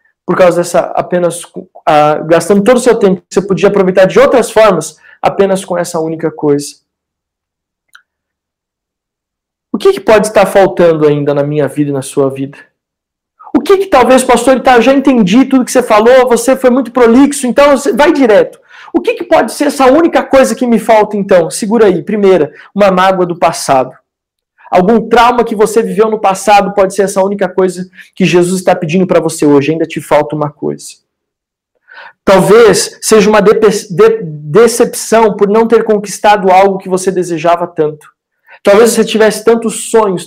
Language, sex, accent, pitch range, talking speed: Portuguese, male, Brazilian, 185-240 Hz, 175 wpm